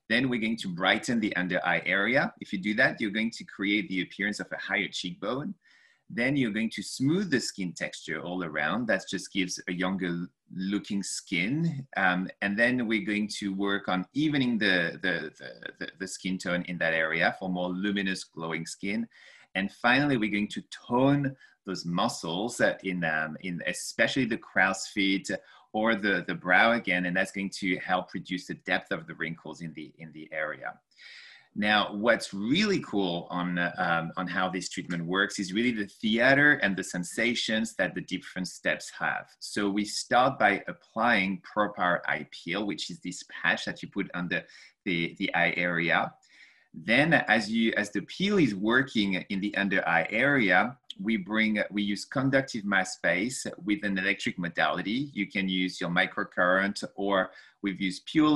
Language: English